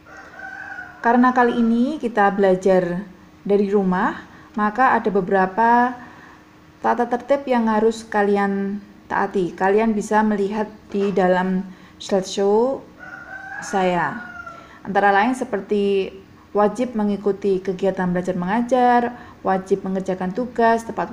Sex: female